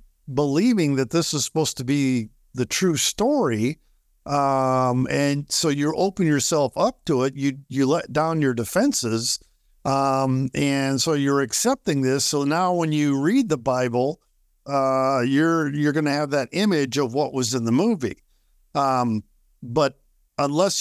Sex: male